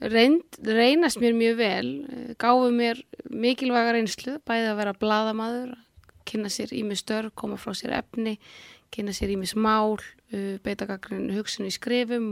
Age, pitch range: 20-39, 220-260 Hz